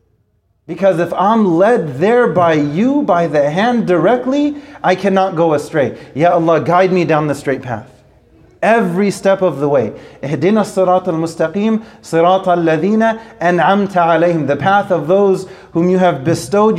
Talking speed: 145 wpm